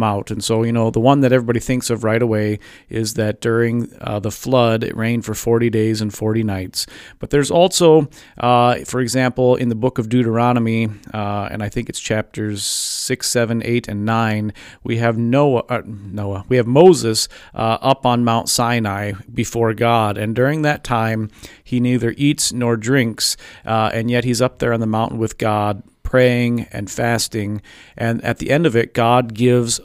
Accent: American